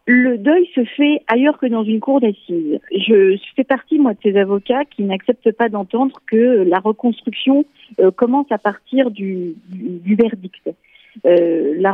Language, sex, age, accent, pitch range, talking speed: French, female, 40-59, French, 220-275 Hz, 175 wpm